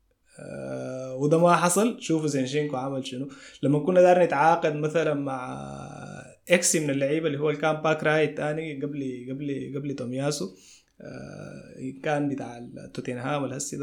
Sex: male